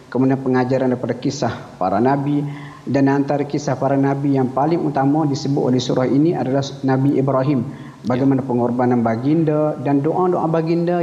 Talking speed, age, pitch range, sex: 145 wpm, 50-69, 135-155 Hz, male